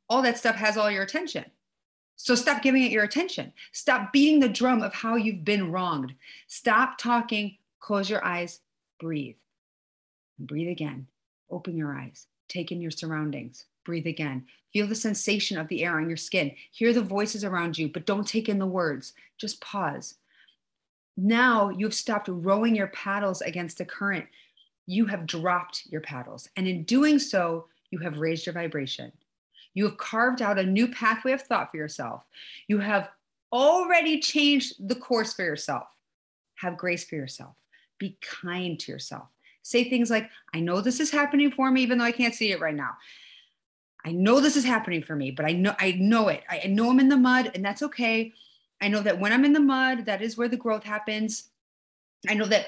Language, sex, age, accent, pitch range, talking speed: English, female, 40-59, American, 175-240 Hz, 190 wpm